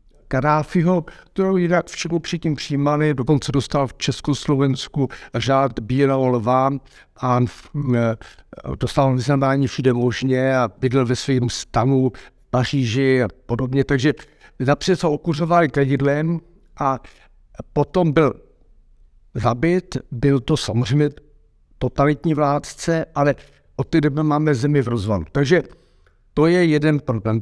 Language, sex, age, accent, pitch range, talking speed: Czech, male, 60-79, native, 120-155 Hz, 115 wpm